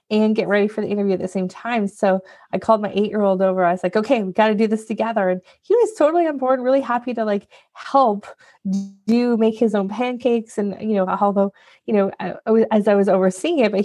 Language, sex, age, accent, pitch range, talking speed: English, female, 20-39, American, 195-245 Hz, 235 wpm